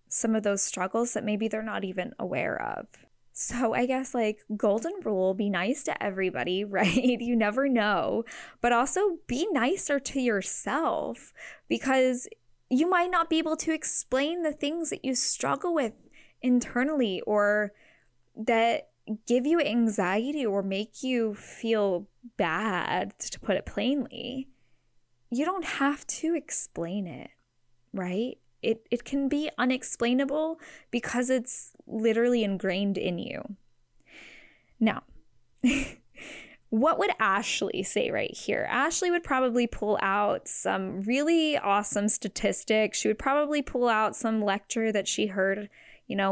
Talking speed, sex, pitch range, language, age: 140 wpm, female, 205-265 Hz, English, 10-29